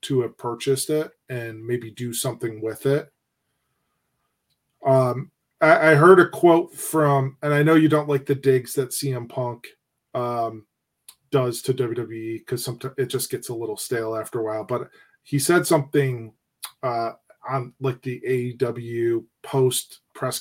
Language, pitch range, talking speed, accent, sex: English, 120-145 Hz, 160 wpm, American, male